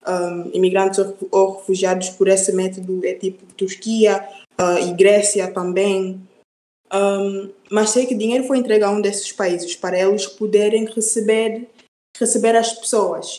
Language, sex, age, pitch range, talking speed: Portuguese, female, 20-39, 190-220 Hz, 145 wpm